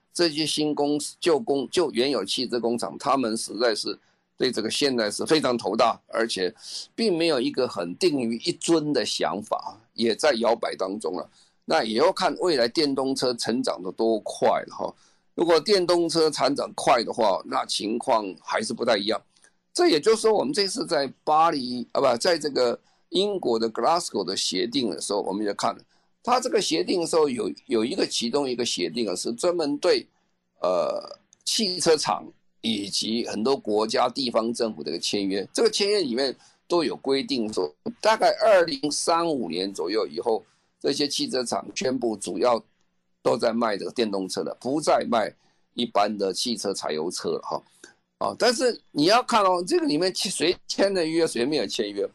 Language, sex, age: Chinese, male, 50-69